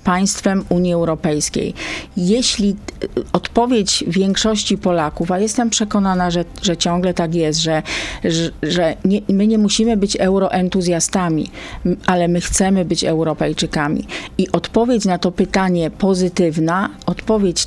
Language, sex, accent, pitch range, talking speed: Polish, female, native, 165-200 Hz, 120 wpm